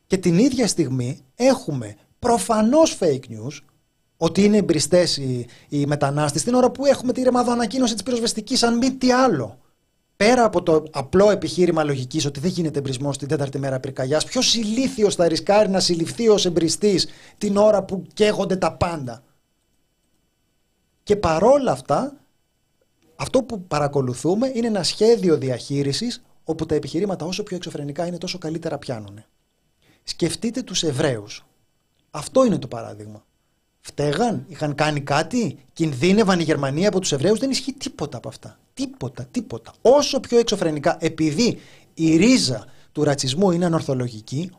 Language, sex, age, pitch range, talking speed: Greek, male, 30-49, 150-230 Hz, 145 wpm